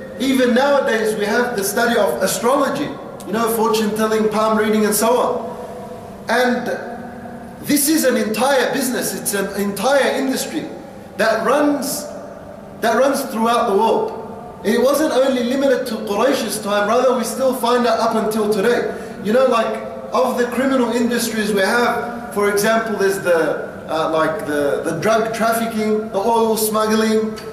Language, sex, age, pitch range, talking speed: English, male, 30-49, 215-260 Hz, 155 wpm